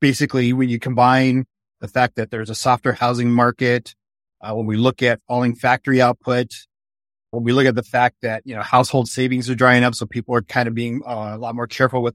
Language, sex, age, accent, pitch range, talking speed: English, male, 30-49, American, 110-130 Hz, 225 wpm